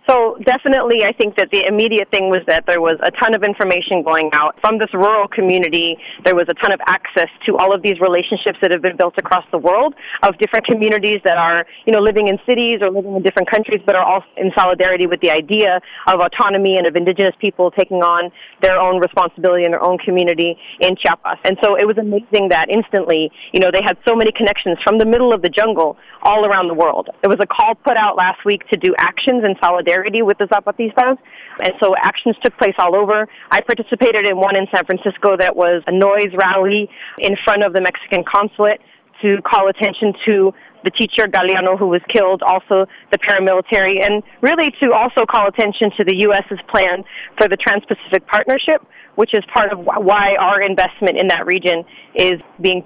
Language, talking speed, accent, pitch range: English, 210 wpm, American, 185-215 Hz